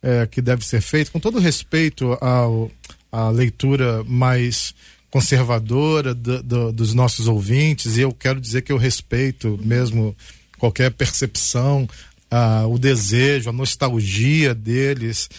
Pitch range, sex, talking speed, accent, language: 130-175 Hz, male, 130 wpm, Brazilian, Portuguese